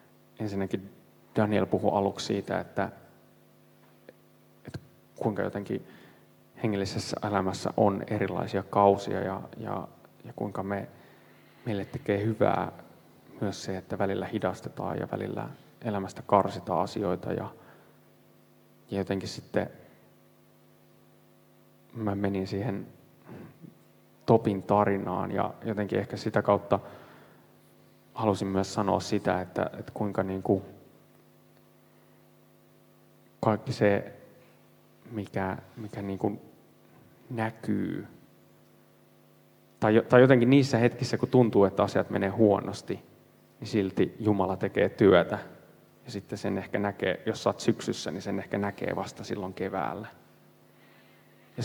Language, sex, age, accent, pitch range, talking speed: Finnish, male, 30-49, native, 95-110 Hz, 110 wpm